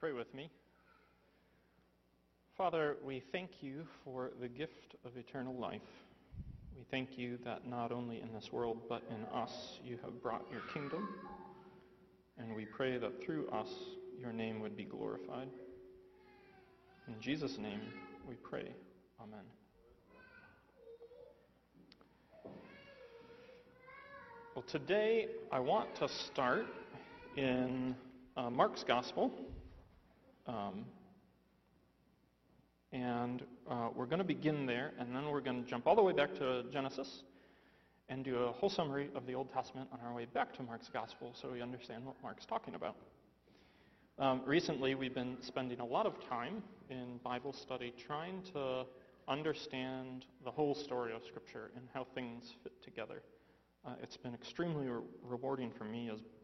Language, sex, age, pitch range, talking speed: English, male, 40-59, 120-145 Hz, 140 wpm